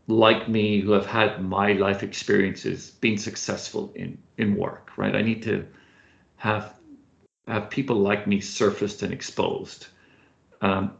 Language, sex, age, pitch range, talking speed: English, male, 50-69, 100-130 Hz, 140 wpm